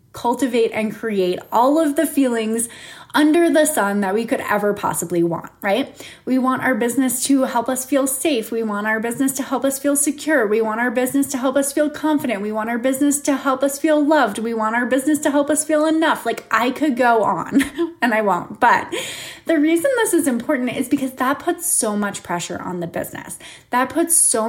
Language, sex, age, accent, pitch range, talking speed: English, female, 20-39, American, 210-285 Hz, 220 wpm